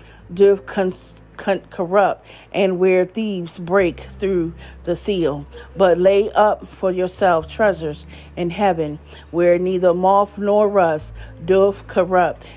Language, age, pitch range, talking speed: English, 40-59, 170-205 Hz, 125 wpm